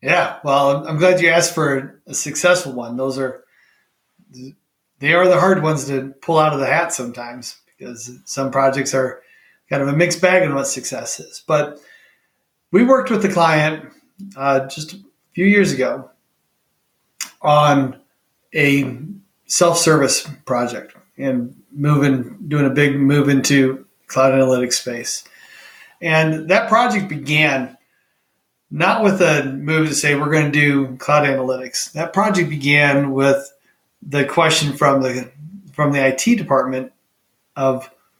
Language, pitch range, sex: English, 135-165 Hz, male